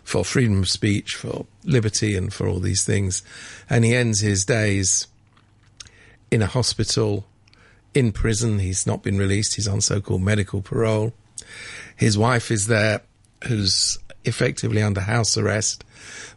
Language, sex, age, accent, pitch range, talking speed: English, male, 50-69, British, 105-125 Hz, 145 wpm